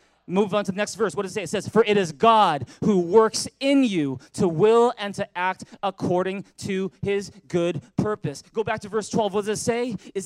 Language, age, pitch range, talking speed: English, 20-39, 180-235 Hz, 235 wpm